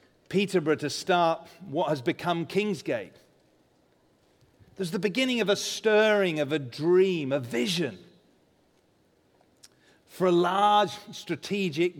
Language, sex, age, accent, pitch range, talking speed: English, male, 40-59, British, 150-205 Hz, 110 wpm